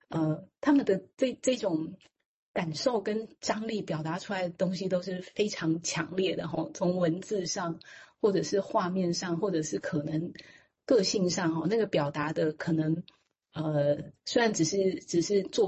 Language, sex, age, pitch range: Chinese, female, 30-49, 160-200 Hz